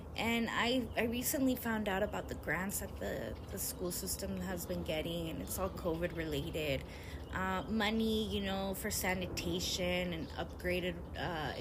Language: English